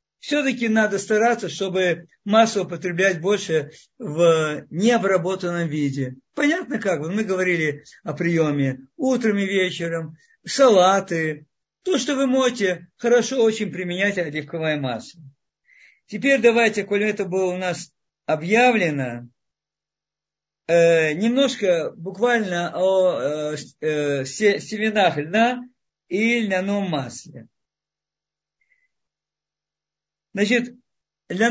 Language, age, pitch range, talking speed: Russian, 50-69, 165-235 Hz, 90 wpm